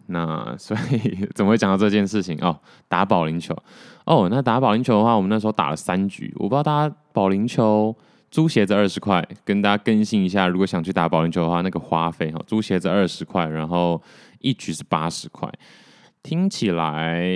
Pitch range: 85-110 Hz